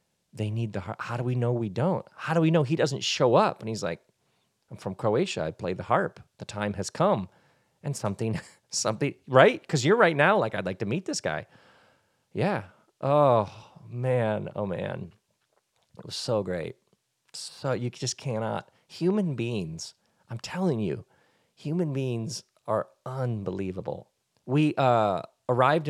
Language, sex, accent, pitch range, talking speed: English, male, American, 95-130 Hz, 165 wpm